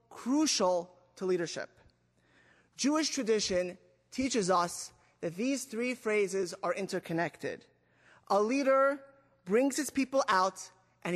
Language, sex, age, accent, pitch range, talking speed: English, male, 30-49, American, 195-250 Hz, 110 wpm